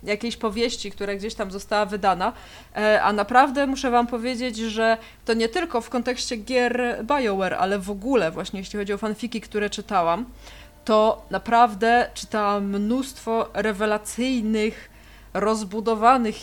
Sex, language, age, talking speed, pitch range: female, Polish, 20-39, 130 wpm, 200-240 Hz